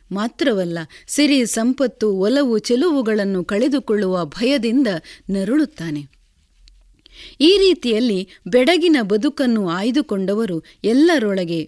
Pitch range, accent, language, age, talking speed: 195-280 Hz, native, Kannada, 30-49, 70 wpm